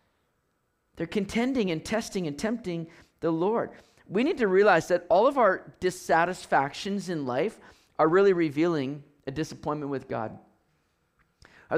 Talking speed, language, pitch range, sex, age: 140 wpm, English, 145-195 Hz, male, 40-59